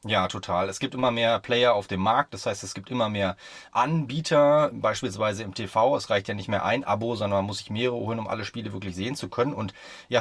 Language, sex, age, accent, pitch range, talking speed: German, male, 30-49, German, 110-140 Hz, 245 wpm